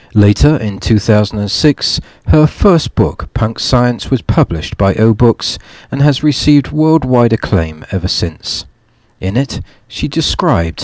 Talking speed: 125 wpm